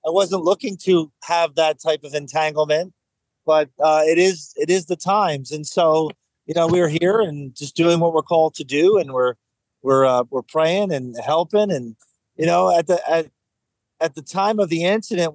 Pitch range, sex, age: 145-175 Hz, male, 40-59